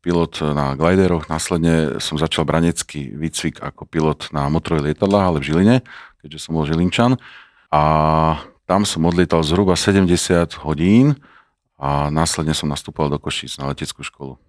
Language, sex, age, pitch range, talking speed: Slovak, male, 40-59, 75-85 Hz, 150 wpm